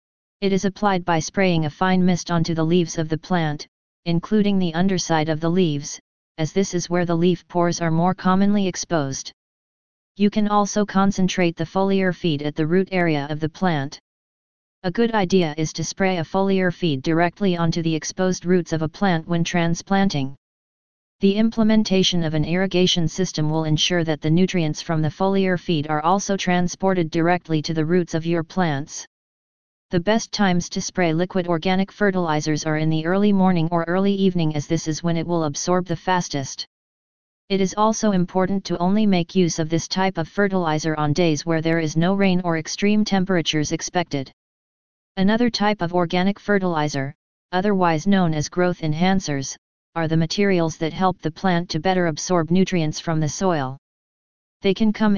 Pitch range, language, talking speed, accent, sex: 160-190 Hz, English, 180 wpm, American, female